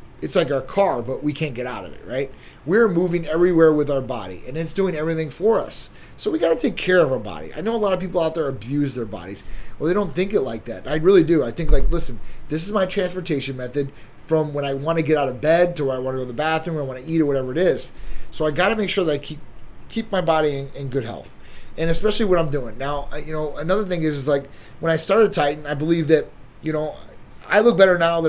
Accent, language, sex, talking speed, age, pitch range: American, English, male, 280 wpm, 30-49, 135-170 Hz